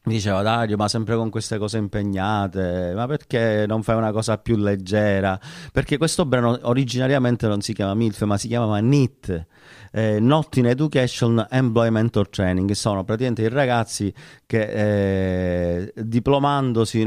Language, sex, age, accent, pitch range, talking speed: Italian, male, 30-49, native, 105-130 Hz, 150 wpm